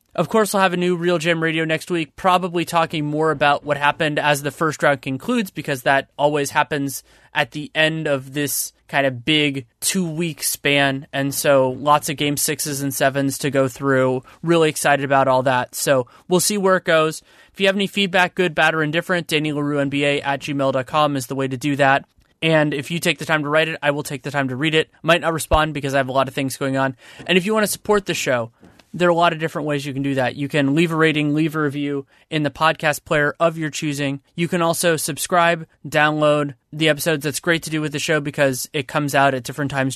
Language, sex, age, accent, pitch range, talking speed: English, male, 20-39, American, 140-160 Hz, 245 wpm